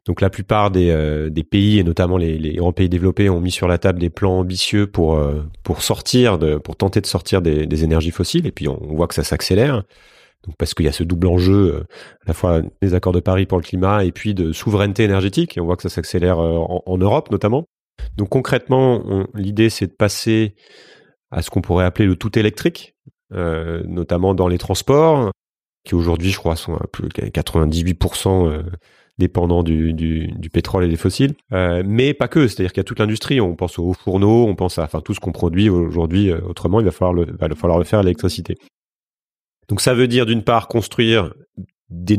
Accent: French